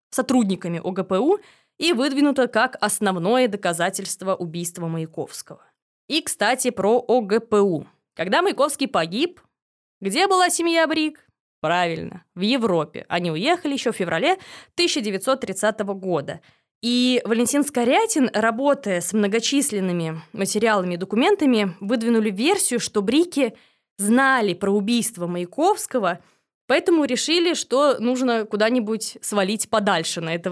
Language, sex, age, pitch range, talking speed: Russian, female, 20-39, 185-260 Hz, 110 wpm